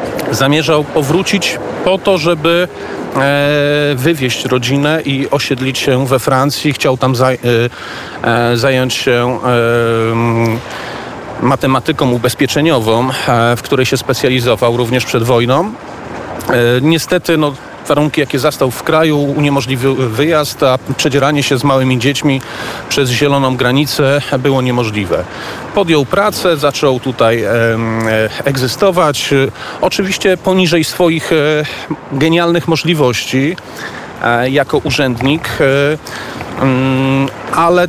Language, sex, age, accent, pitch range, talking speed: Polish, male, 40-59, native, 125-160 Hz, 100 wpm